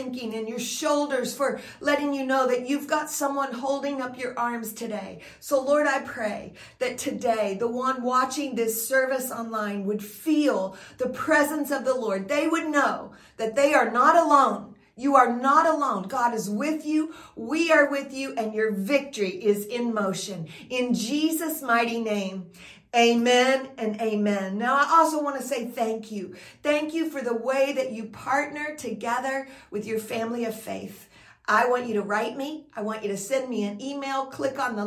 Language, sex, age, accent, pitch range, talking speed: English, female, 50-69, American, 210-275 Hz, 185 wpm